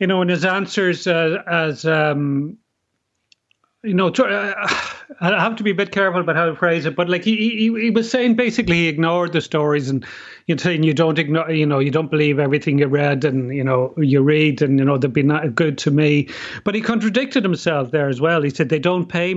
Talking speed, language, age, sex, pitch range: 230 wpm, English, 40-59, male, 150-180 Hz